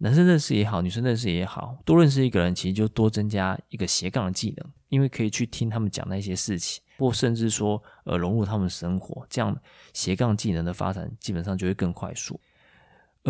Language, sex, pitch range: Chinese, male, 100-145 Hz